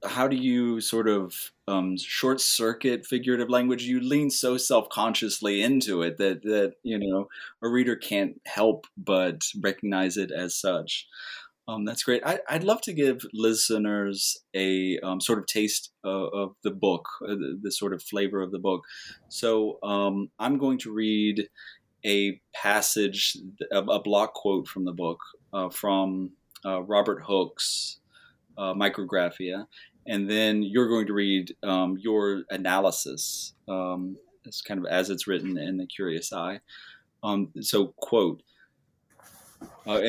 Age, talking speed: 30-49, 150 wpm